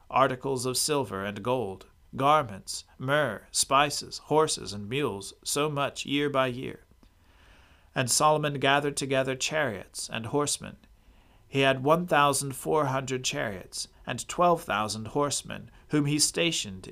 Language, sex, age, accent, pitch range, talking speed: English, male, 40-59, American, 105-145 Hz, 130 wpm